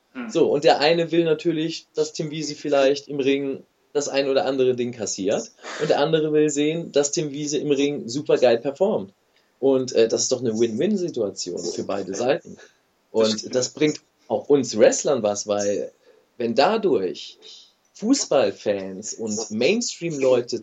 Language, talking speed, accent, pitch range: German, 155 wpm, German, 120-160 Hz